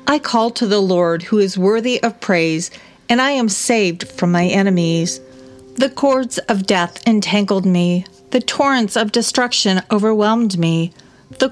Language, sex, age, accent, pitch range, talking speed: English, female, 40-59, American, 180-235 Hz, 155 wpm